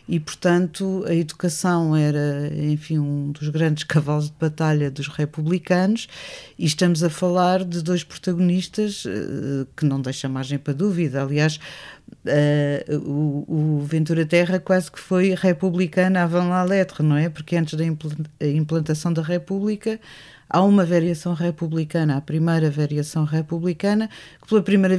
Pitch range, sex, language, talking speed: 155-180 Hz, female, Portuguese, 135 wpm